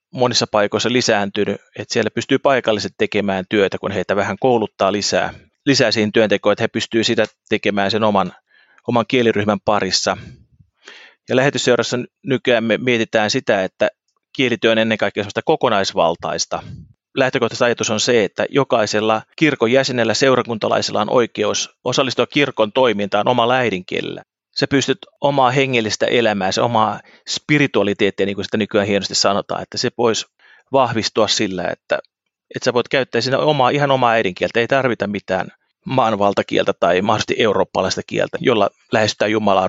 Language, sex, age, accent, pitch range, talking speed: Finnish, male, 30-49, native, 105-130 Hz, 140 wpm